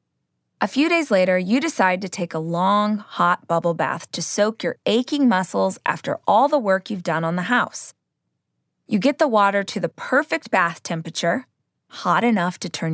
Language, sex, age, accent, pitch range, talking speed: English, female, 20-39, American, 185-245 Hz, 185 wpm